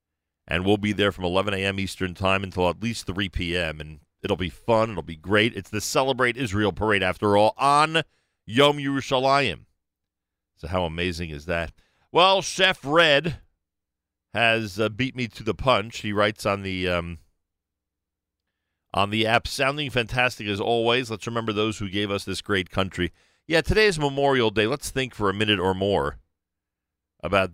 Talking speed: 170 wpm